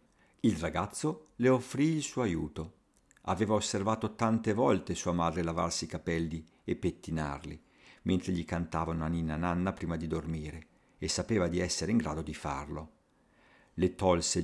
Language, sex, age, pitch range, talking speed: Italian, male, 50-69, 85-120 Hz, 155 wpm